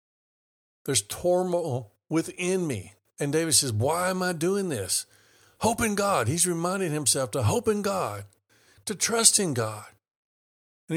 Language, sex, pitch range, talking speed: English, male, 110-180 Hz, 150 wpm